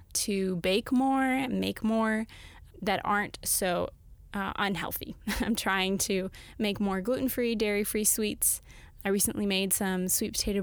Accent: American